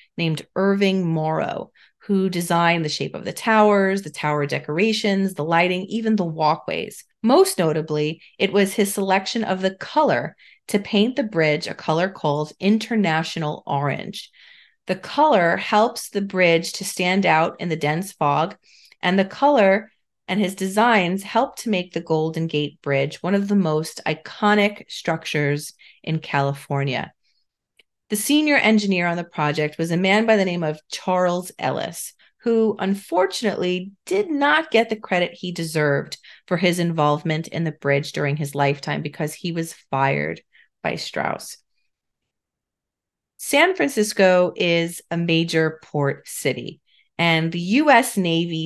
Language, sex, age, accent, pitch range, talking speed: English, female, 30-49, American, 160-205 Hz, 145 wpm